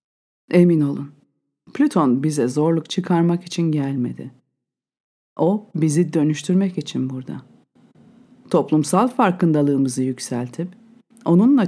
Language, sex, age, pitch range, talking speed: Turkish, female, 50-69, 140-190 Hz, 85 wpm